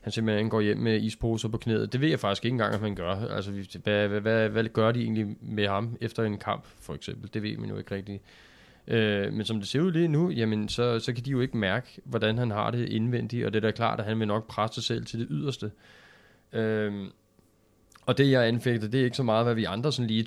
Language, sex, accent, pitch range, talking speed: Danish, male, native, 100-120 Hz, 265 wpm